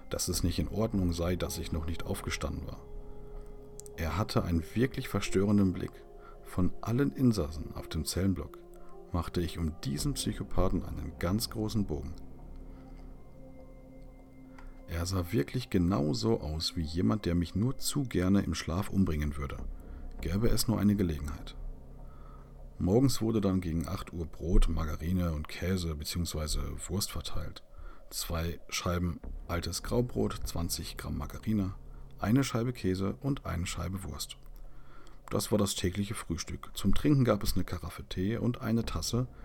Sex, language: male, German